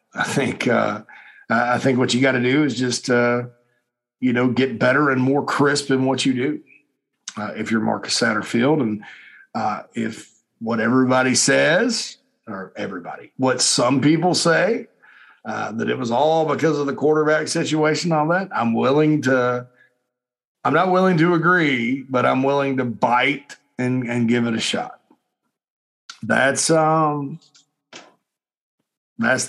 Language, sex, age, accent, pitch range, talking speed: English, male, 50-69, American, 120-150 Hz, 155 wpm